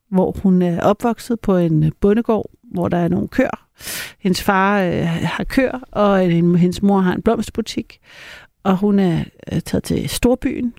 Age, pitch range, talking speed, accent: 60-79, 175-205 Hz, 170 wpm, native